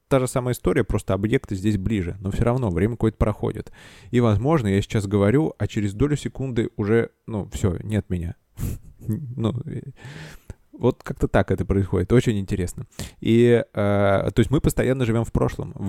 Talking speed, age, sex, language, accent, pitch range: 160 wpm, 20-39, male, Russian, native, 100-125 Hz